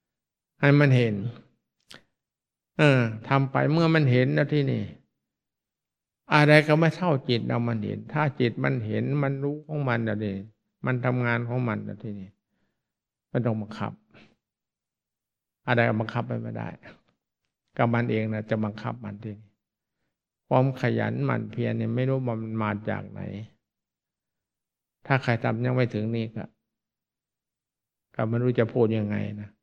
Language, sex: English, male